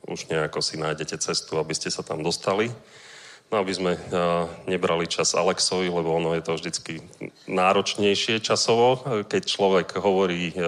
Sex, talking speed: male, 150 wpm